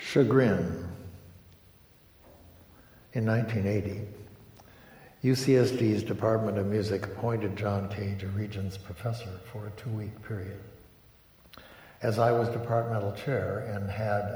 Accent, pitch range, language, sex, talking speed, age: American, 100-115 Hz, English, male, 100 wpm, 60-79